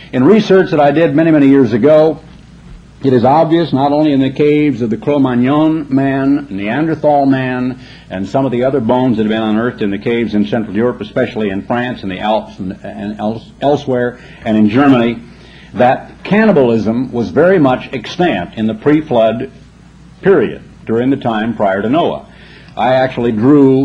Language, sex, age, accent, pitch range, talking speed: English, male, 60-79, American, 110-140 Hz, 175 wpm